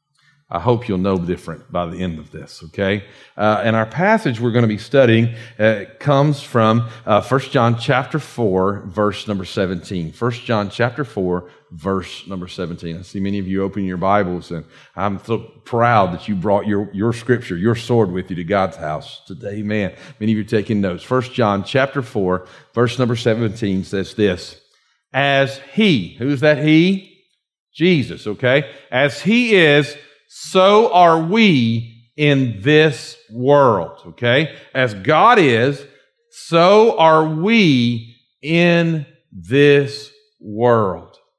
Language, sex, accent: English, male, American